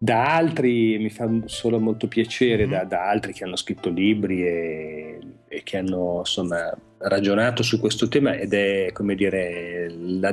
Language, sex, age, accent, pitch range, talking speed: Italian, male, 40-59, native, 95-115 Hz, 165 wpm